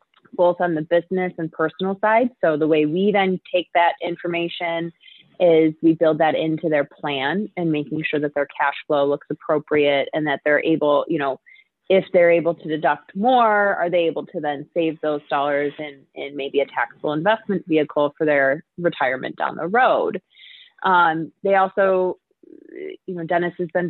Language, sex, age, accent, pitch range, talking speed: English, female, 20-39, American, 155-185 Hz, 180 wpm